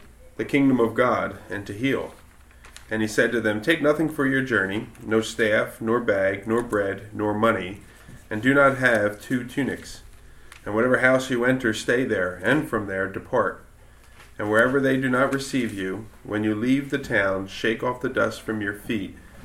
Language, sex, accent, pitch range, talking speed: English, male, American, 95-120 Hz, 190 wpm